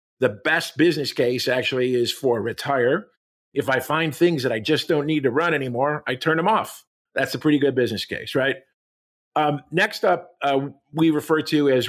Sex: male